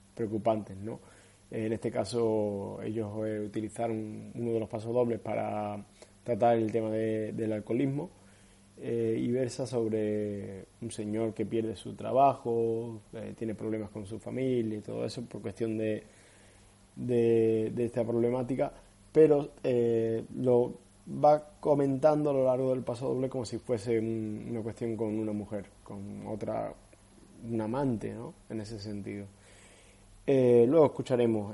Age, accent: 20-39, Argentinian